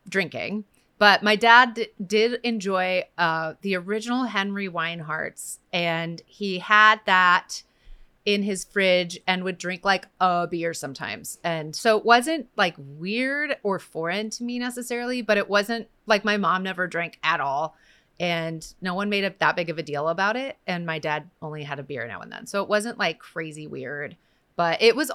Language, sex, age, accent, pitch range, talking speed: English, female, 30-49, American, 165-215 Hz, 185 wpm